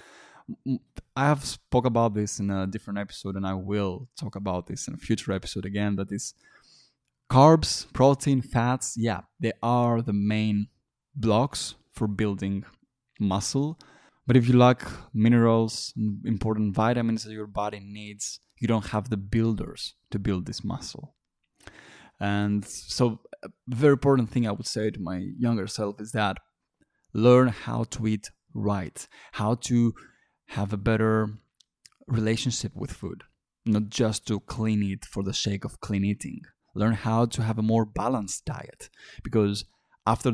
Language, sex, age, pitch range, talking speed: Greek, male, 20-39, 100-115 Hz, 155 wpm